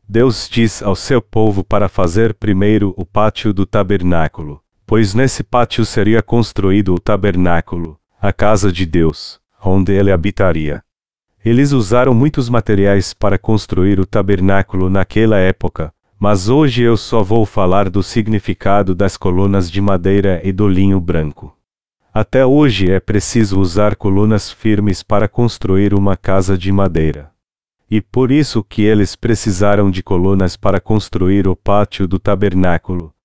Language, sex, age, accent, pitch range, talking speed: Portuguese, male, 40-59, Brazilian, 95-110 Hz, 145 wpm